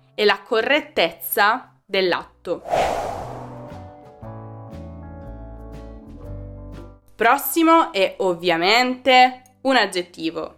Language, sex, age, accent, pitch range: Italian, female, 20-39, native, 175-240 Hz